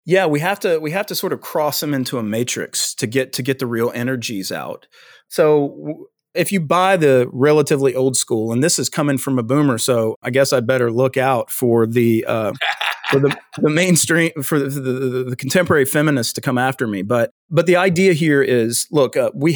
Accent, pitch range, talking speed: American, 115-150 Hz, 220 wpm